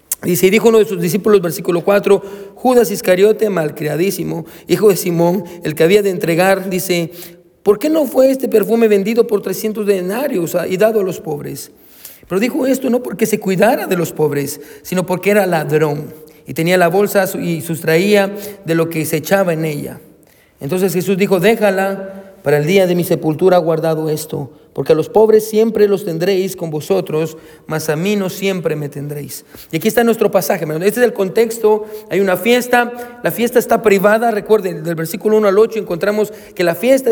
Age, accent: 40-59, Mexican